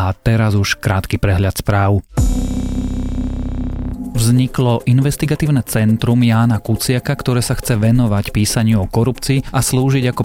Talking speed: 125 wpm